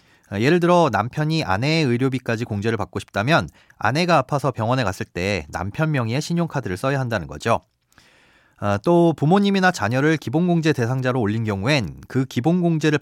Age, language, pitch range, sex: 30-49, Korean, 105-160 Hz, male